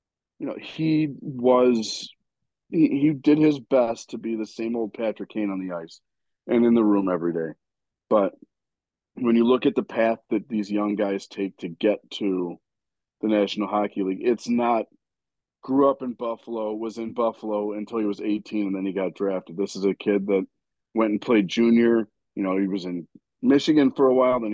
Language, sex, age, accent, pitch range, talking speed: English, male, 40-59, American, 105-140 Hz, 200 wpm